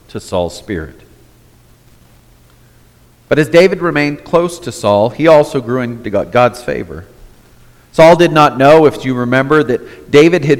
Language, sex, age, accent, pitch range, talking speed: English, male, 40-59, American, 115-155 Hz, 145 wpm